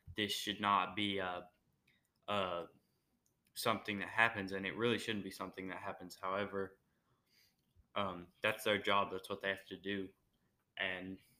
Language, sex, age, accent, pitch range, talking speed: English, male, 10-29, American, 95-115 Hz, 155 wpm